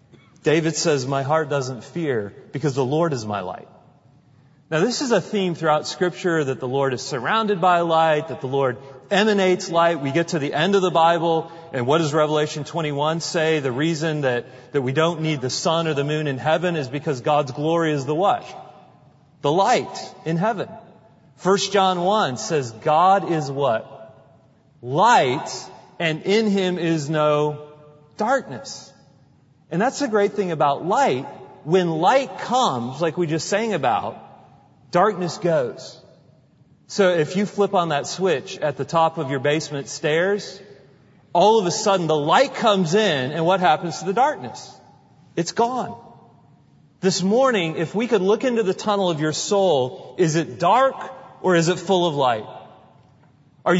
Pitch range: 145-190 Hz